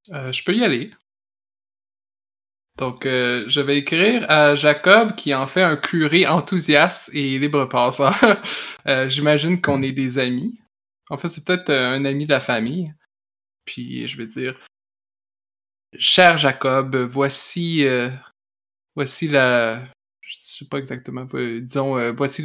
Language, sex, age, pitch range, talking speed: French, male, 20-39, 125-150 Hz, 140 wpm